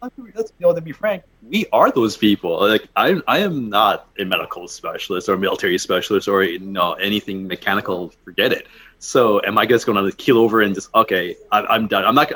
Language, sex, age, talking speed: English, male, 30-49, 220 wpm